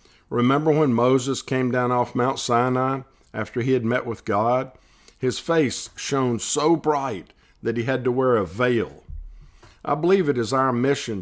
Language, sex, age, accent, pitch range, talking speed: English, male, 50-69, American, 110-140 Hz, 170 wpm